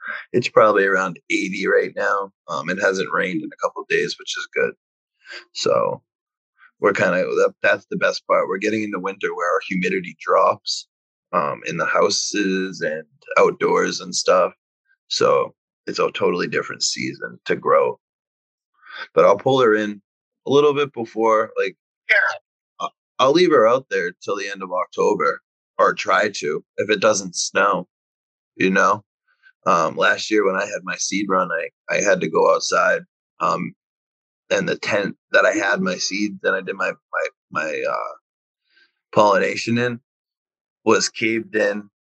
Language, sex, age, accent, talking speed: English, male, 20-39, American, 165 wpm